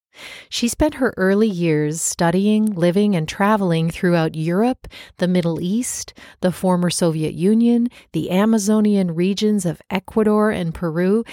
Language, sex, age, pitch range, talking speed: English, female, 40-59, 170-215 Hz, 130 wpm